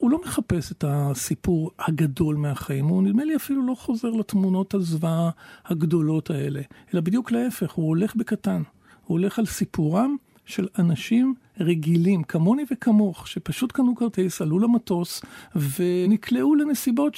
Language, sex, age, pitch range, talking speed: Hebrew, male, 50-69, 165-235 Hz, 135 wpm